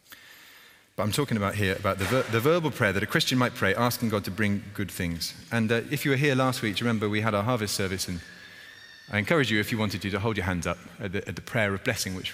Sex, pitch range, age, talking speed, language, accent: male, 100-120 Hz, 30-49, 270 wpm, English, British